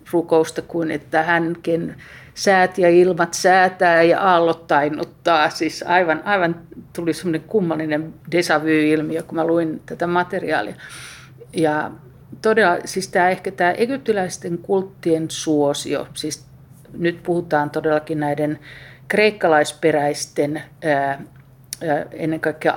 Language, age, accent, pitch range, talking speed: Finnish, 50-69, native, 150-170 Hz, 105 wpm